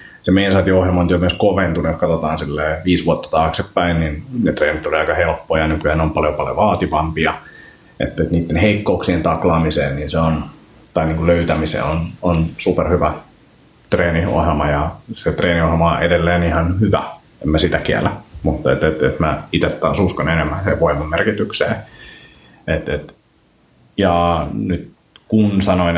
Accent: native